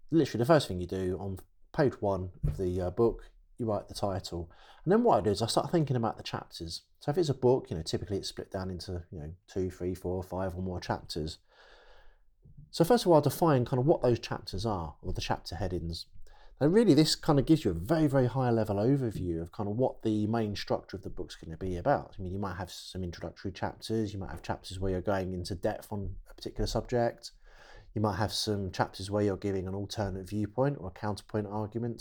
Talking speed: 240 wpm